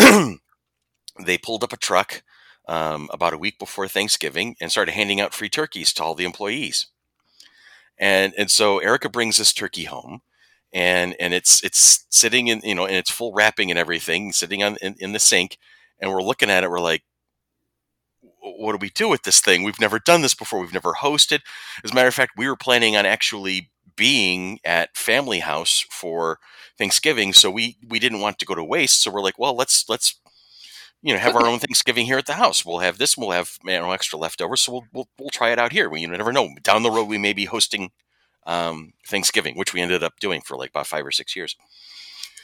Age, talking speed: 40-59, 220 wpm